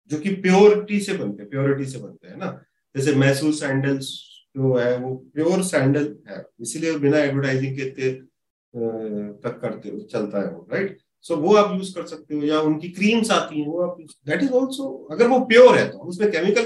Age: 40-59